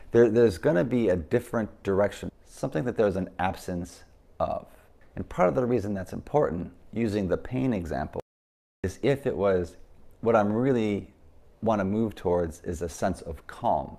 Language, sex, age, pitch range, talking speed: English, male, 30-49, 85-105 Hz, 170 wpm